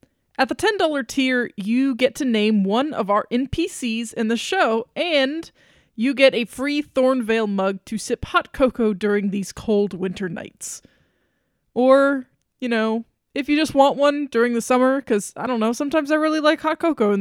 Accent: American